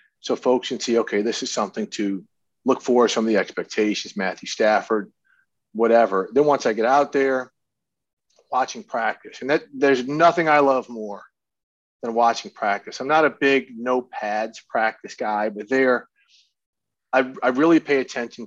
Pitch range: 105-130 Hz